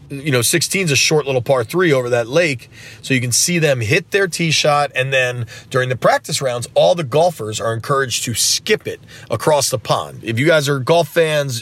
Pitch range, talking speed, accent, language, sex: 120-165 Hz, 225 wpm, American, English, male